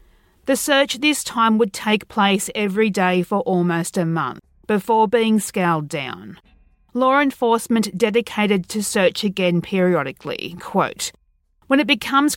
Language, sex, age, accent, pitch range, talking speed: English, female, 40-59, Australian, 175-235 Hz, 135 wpm